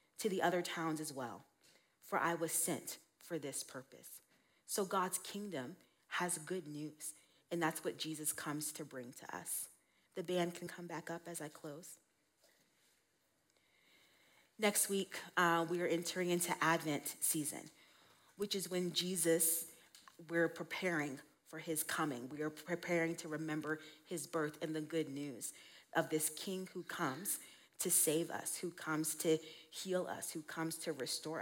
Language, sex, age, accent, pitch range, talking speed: English, female, 40-59, American, 155-180 Hz, 160 wpm